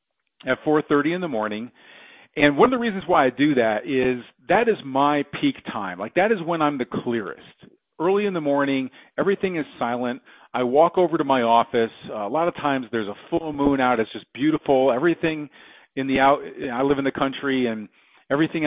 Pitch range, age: 115-150 Hz, 40-59